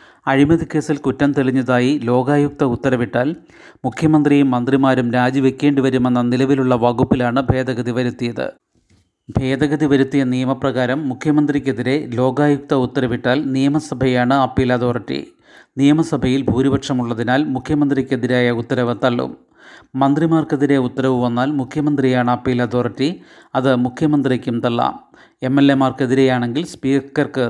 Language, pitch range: Malayalam, 125-140 Hz